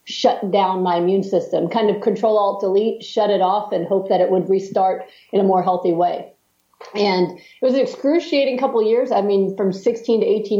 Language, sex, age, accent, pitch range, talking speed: English, female, 40-59, American, 170-200 Hz, 215 wpm